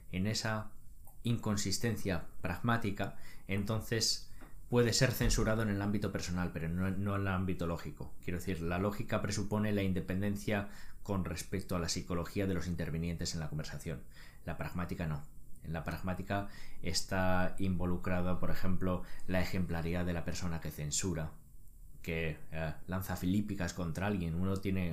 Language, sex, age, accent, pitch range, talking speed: Spanish, male, 20-39, Spanish, 90-100 Hz, 145 wpm